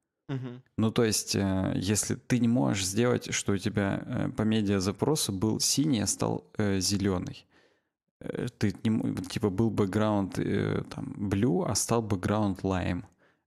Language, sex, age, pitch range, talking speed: Russian, male, 20-39, 100-125 Hz, 115 wpm